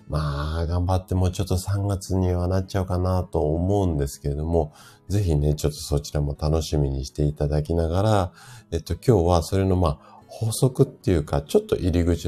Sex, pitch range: male, 75-105 Hz